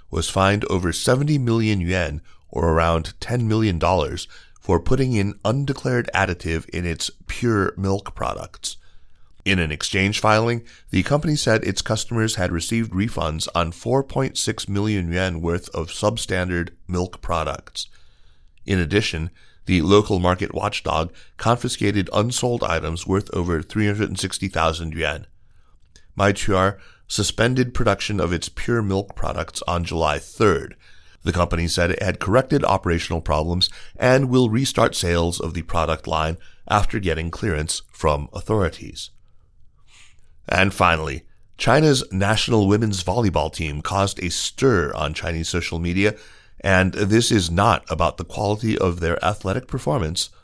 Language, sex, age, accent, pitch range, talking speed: English, male, 30-49, American, 85-105 Hz, 130 wpm